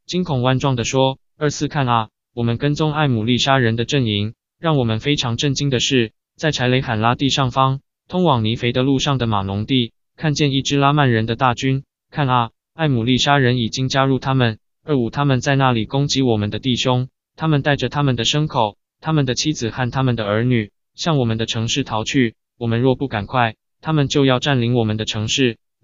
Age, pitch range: 20-39, 115-140 Hz